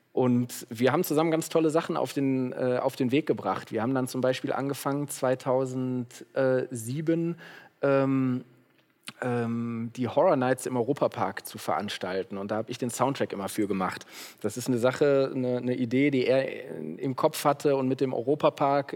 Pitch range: 120-140 Hz